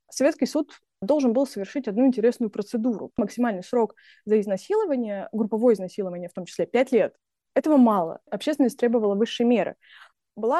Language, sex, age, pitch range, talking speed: Russian, female, 20-39, 195-250 Hz, 145 wpm